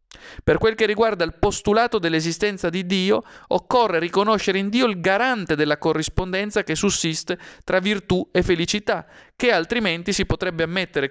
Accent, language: native, Italian